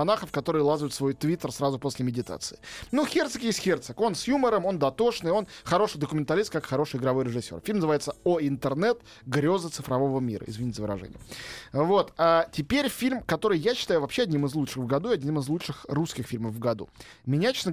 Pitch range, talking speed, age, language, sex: 135-195 Hz, 195 wpm, 20-39, Russian, male